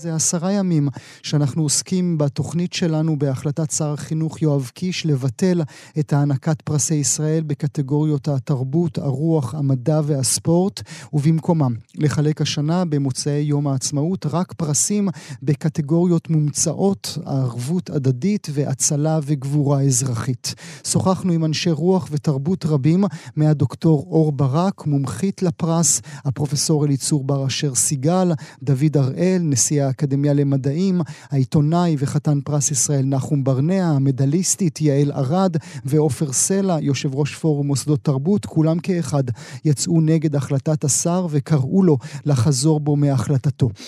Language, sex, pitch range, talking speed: Hebrew, male, 145-165 Hz, 115 wpm